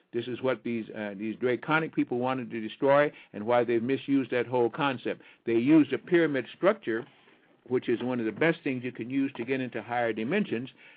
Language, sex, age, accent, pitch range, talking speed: English, male, 60-79, American, 115-145 Hz, 210 wpm